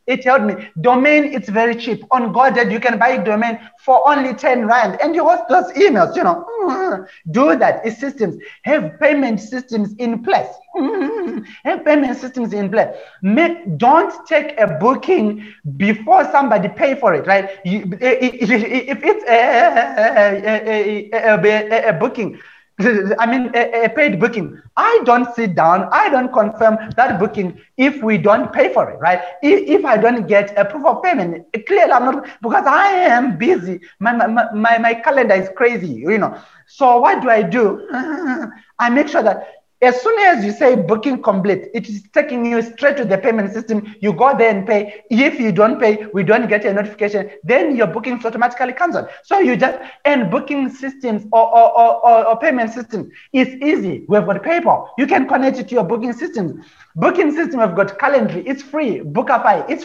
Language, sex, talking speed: English, male, 190 wpm